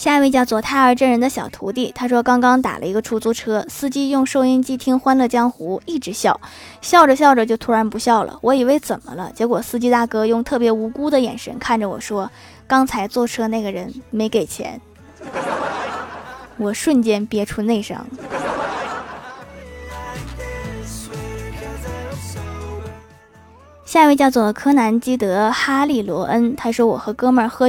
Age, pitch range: 20-39, 215-265 Hz